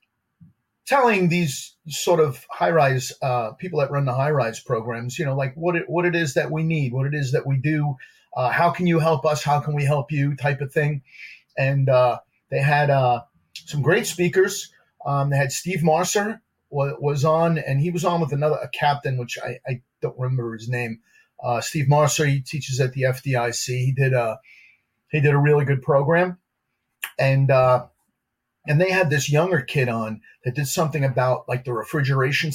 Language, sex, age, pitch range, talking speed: English, male, 40-59, 130-155 Hz, 200 wpm